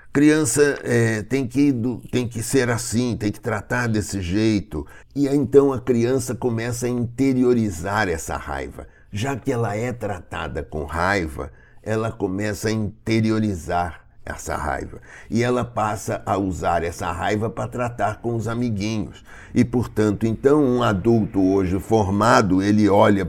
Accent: Brazilian